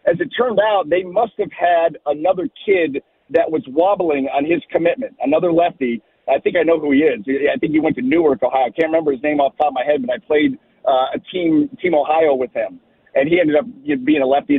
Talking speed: 245 wpm